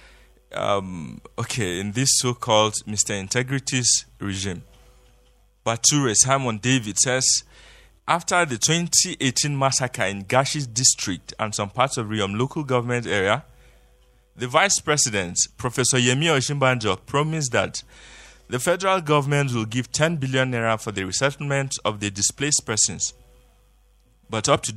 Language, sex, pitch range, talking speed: English, male, 110-140 Hz, 130 wpm